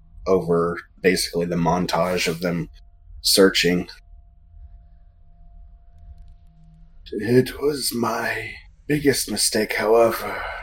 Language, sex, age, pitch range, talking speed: English, male, 20-39, 80-95 Hz, 75 wpm